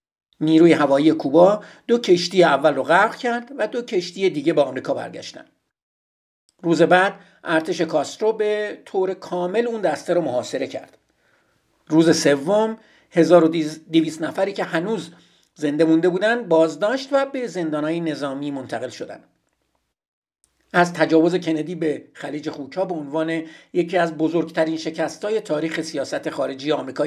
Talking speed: 135 wpm